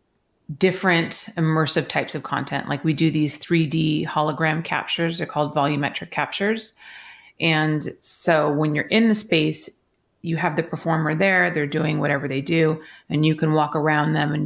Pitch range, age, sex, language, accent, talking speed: 150-185 Hz, 30-49, female, English, American, 165 wpm